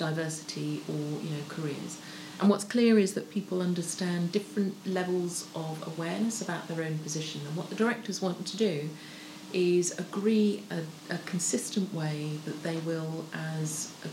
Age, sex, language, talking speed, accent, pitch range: 40-59, female, English, 160 wpm, British, 155-185 Hz